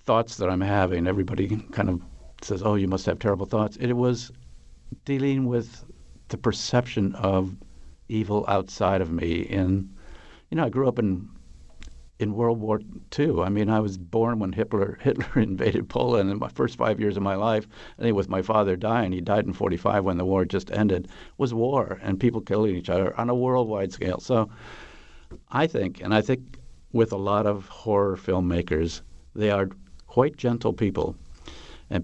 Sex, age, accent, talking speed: male, 50-69, American, 190 wpm